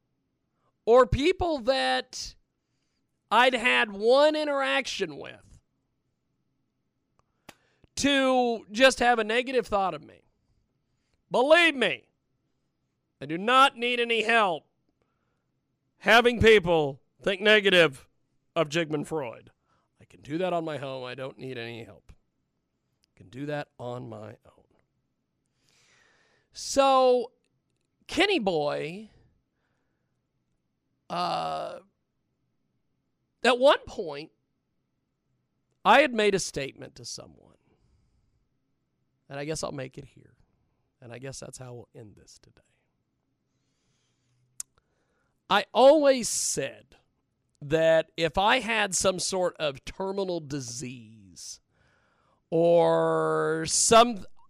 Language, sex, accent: English, male, American